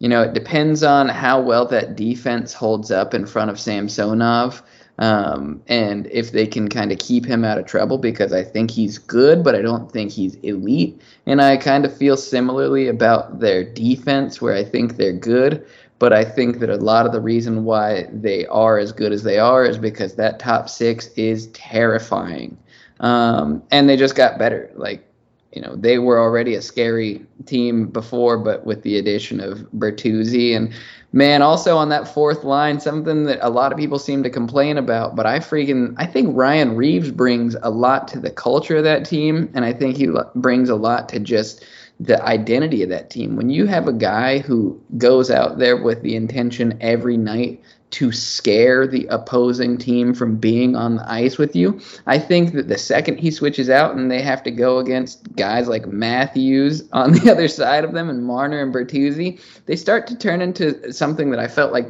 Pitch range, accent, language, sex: 115-140 Hz, American, English, male